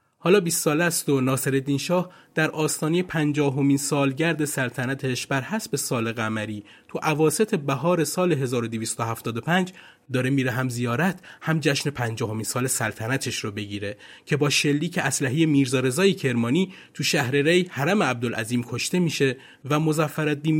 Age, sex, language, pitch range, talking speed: 30-49, male, Persian, 125-165 Hz, 140 wpm